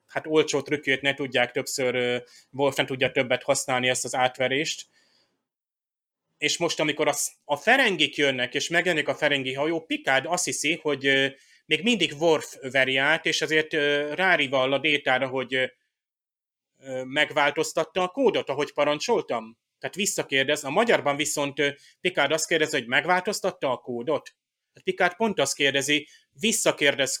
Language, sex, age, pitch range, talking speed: Hungarian, male, 30-49, 135-155 Hz, 140 wpm